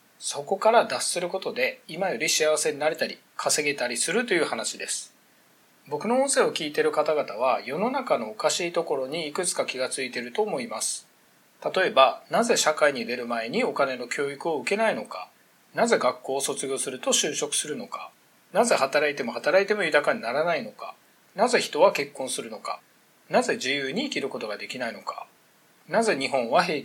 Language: Japanese